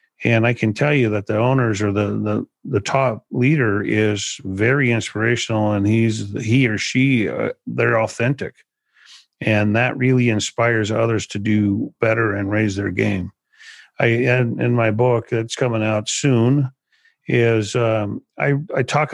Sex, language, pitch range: male, English, 110-125 Hz